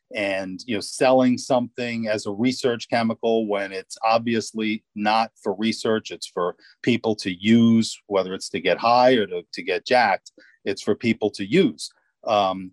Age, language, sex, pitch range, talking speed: 40-59, English, male, 105-130 Hz, 170 wpm